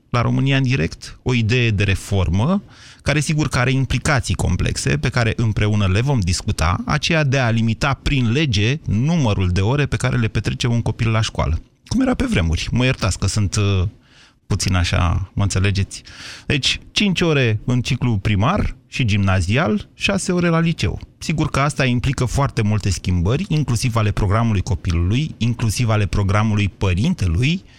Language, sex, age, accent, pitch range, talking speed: Romanian, male, 30-49, native, 105-140 Hz, 165 wpm